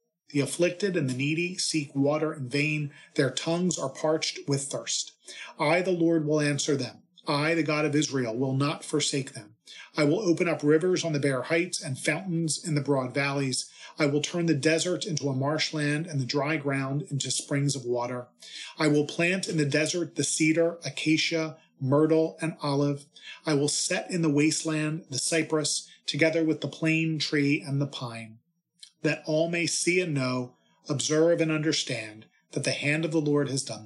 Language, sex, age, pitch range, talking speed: English, male, 40-59, 135-165 Hz, 190 wpm